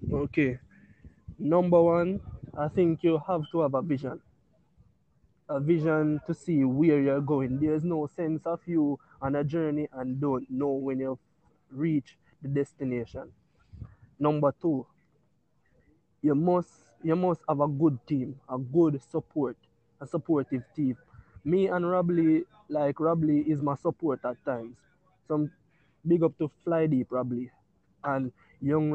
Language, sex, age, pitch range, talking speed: English, male, 20-39, 135-160 Hz, 145 wpm